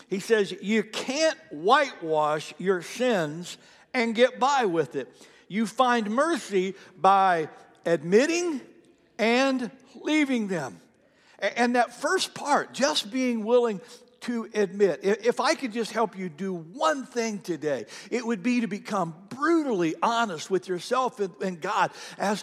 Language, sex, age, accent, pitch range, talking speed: English, male, 60-79, American, 165-235 Hz, 135 wpm